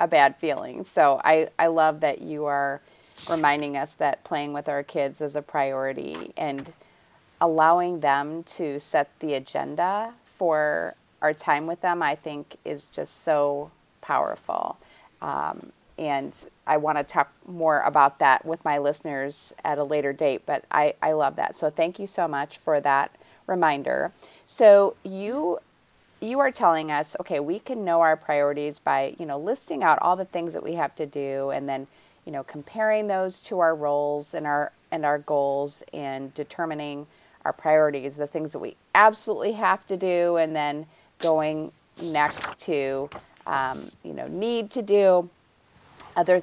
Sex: female